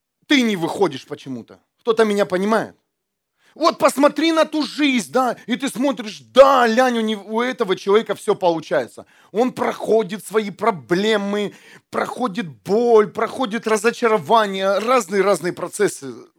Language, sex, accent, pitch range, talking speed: Russian, male, native, 175-235 Hz, 130 wpm